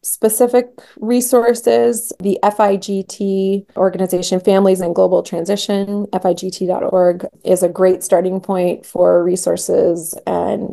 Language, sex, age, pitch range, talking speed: English, female, 20-39, 180-210 Hz, 100 wpm